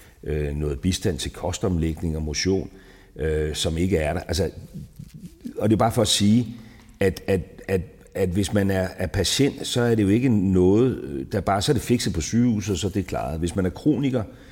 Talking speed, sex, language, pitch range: 205 wpm, male, English, 85-115 Hz